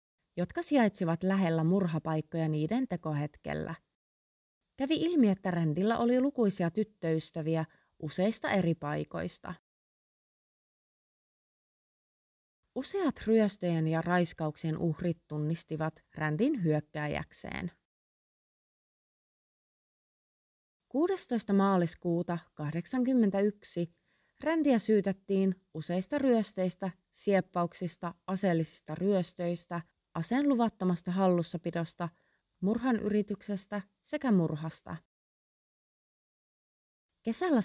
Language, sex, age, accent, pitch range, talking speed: Finnish, female, 30-49, native, 160-210 Hz, 65 wpm